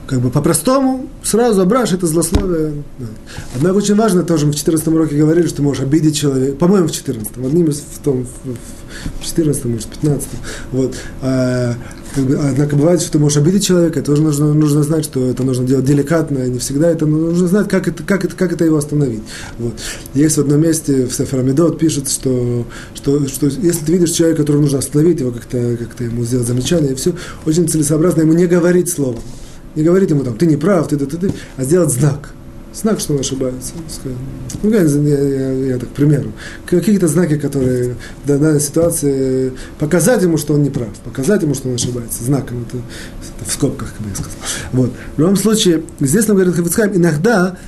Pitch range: 130-170 Hz